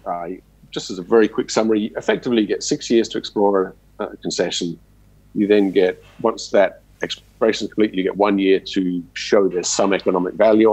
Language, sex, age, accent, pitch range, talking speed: English, male, 50-69, British, 90-105 Hz, 195 wpm